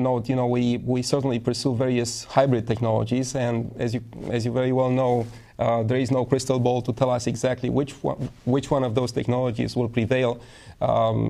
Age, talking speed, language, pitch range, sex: 30-49, 200 wpm, English, 120-140 Hz, male